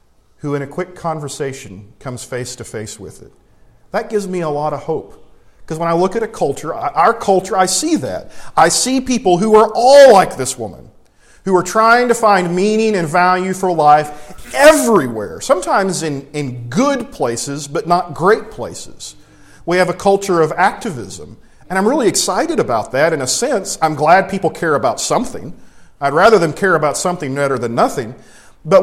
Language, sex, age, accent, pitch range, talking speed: English, male, 40-59, American, 145-195 Hz, 185 wpm